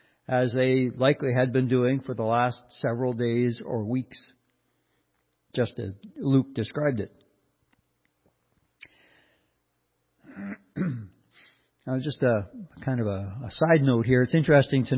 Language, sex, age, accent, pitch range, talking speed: English, male, 60-79, American, 110-130 Hz, 125 wpm